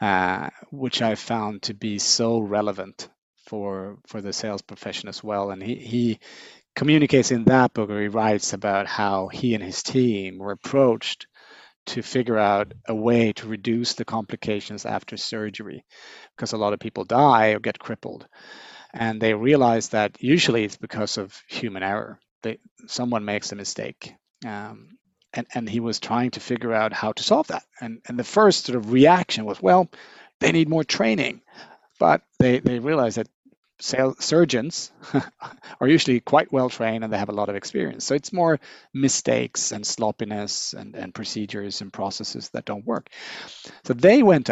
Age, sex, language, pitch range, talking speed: 30-49, male, English, 105-125 Hz, 175 wpm